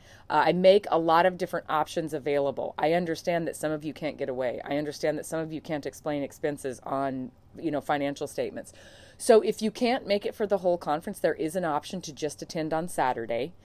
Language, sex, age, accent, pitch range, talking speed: English, female, 30-49, American, 145-180 Hz, 225 wpm